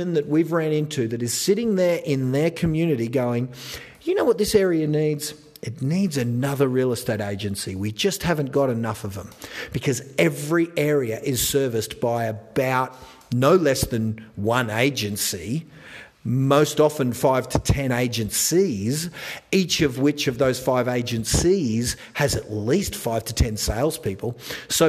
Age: 40-59